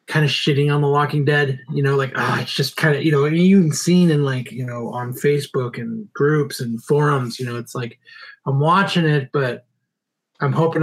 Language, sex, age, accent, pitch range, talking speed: English, male, 20-39, American, 135-155 Hz, 240 wpm